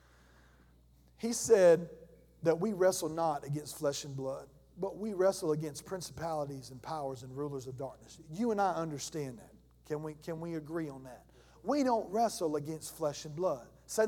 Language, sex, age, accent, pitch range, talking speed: English, male, 40-59, American, 145-215 Hz, 170 wpm